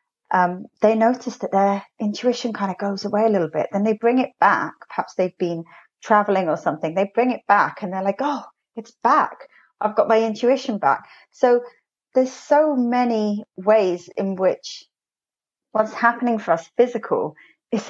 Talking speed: 175 wpm